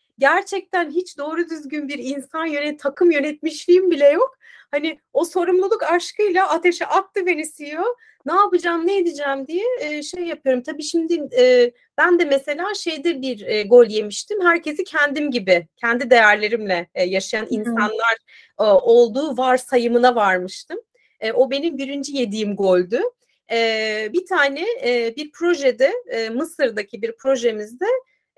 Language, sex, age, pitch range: Turkish, female, 30-49, 250-340 Hz